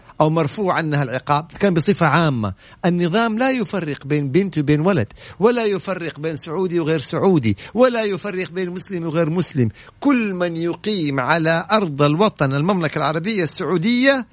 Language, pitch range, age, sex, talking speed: Arabic, 145-195 Hz, 50-69, male, 145 wpm